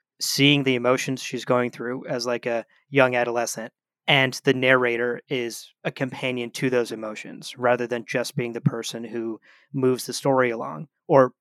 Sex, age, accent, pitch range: male, 30-49, American, 125-145 Hz